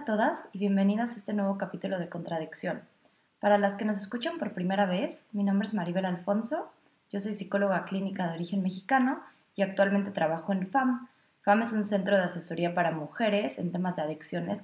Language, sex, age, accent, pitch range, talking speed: Spanish, female, 20-39, Mexican, 175-225 Hz, 190 wpm